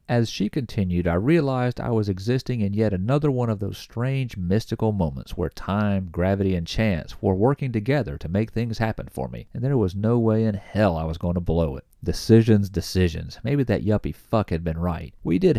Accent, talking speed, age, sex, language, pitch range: American, 210 wpm, 40-59, male, English, 85-115 Hz